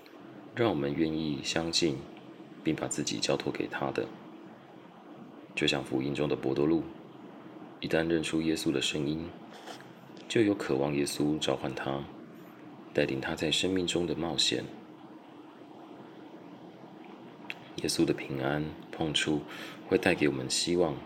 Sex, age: male, 30-49